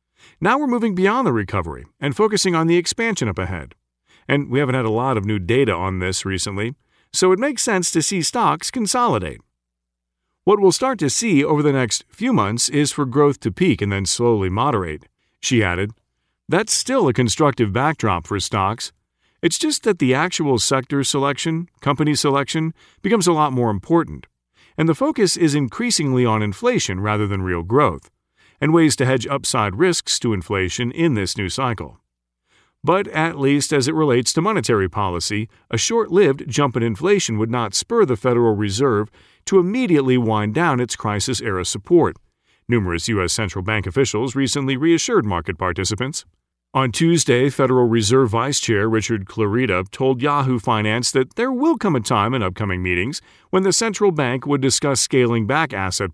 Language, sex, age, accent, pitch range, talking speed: English, male, 40-59, American, 105-155 Hz, 175 wpm